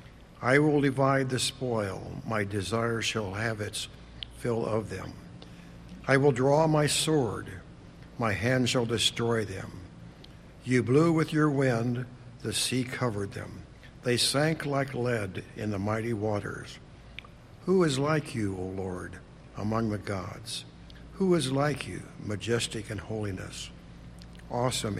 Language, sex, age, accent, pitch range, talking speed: English, male, 60-79, American, 105-135 Hz, 135 wpm